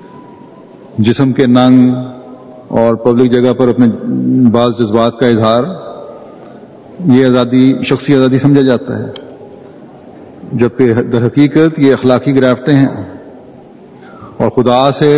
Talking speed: 115 wpm